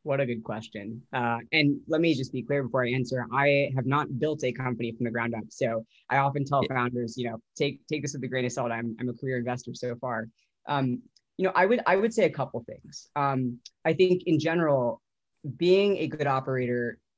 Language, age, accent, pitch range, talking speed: English, 20-39, American, 130-160 Hz, 235 wpm